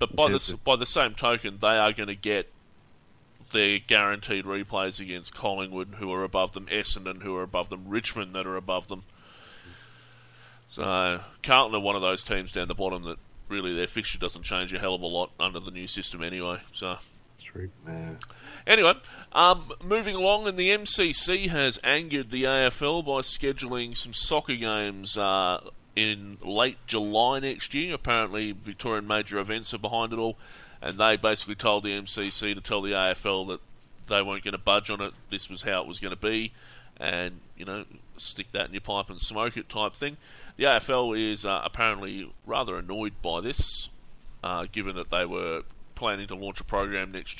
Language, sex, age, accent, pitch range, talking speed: English, male, 30-49, Australian, 95-115 Hz, 185 wpm